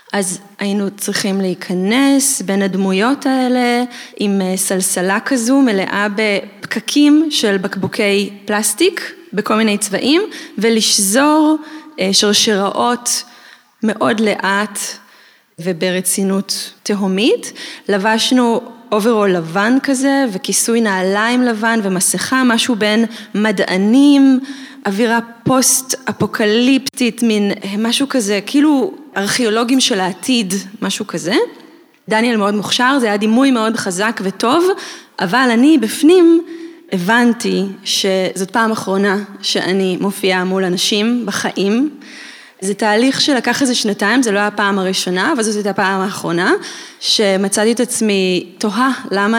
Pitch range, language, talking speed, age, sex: 200-250 Hz, Hebrew, 105 wpm, 20-39, female